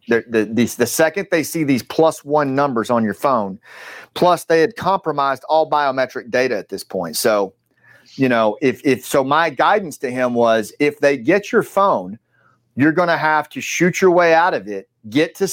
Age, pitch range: 40-59, 120-160 Hz